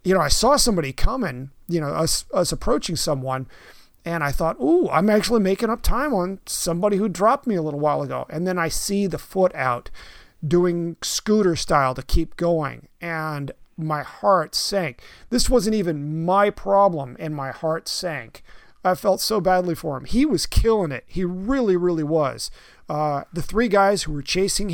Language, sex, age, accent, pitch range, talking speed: English, male, 40-59, American, 150-195 Hz, 185 wpm